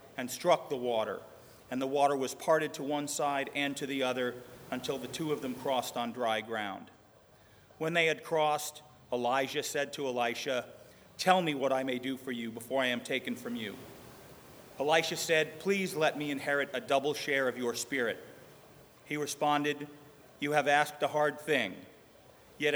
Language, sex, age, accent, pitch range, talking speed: English, male, 40-59, American, 125-155 Hz, 180 wpm